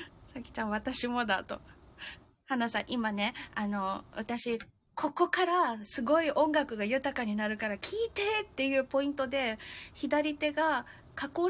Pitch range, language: 210-330 Hz, Japanese